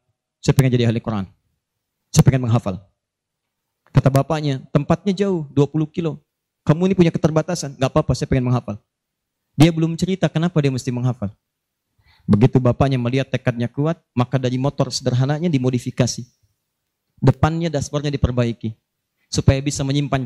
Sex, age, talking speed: male, 30-49, 135 wpm